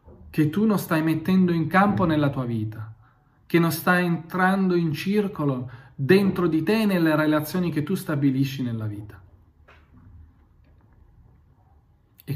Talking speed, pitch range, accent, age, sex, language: 130 wpm, 125-160 Hz, native, 40-59, male, Italian